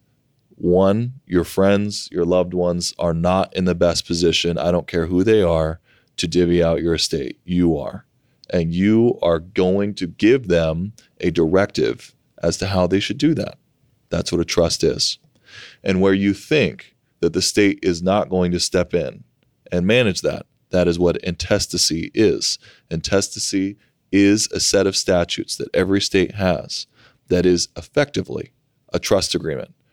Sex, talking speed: male, 165 wpm